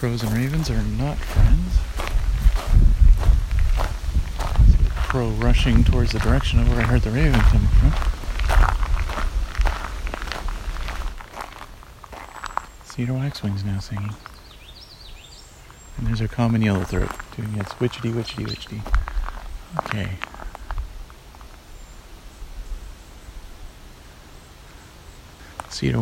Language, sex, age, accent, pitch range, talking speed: English, male, 40-59, American, 75-110 Hz, 85 wpm